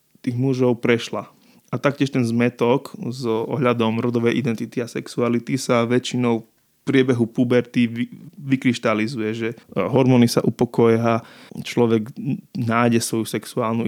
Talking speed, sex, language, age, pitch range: 120 wpm, male, Slovak, 20-39, 115-130 Hz